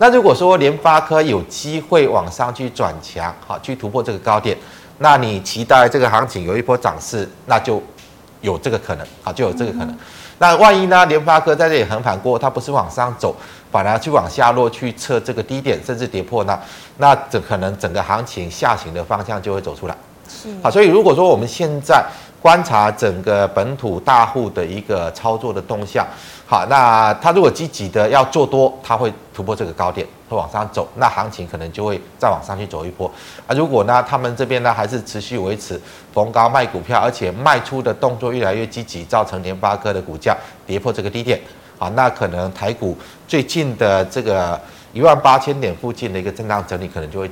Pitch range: 95-135 Hz